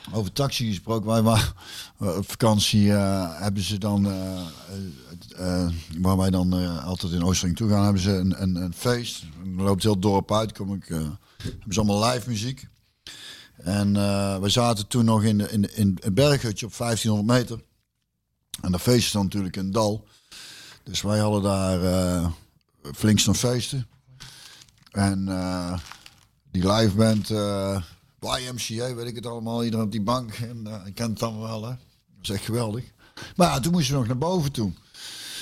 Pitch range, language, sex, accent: 100-130 Hz, Dutch, male, Dutch